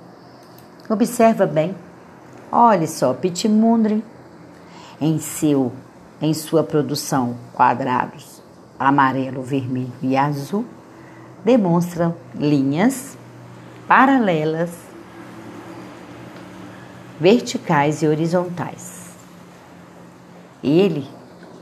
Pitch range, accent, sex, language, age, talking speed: 135-190 Hz, Brazilian, female, Portuguese, 40-59, 60 wpm